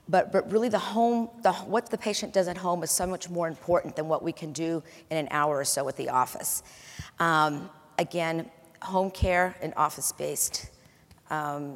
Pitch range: 150-190 Hz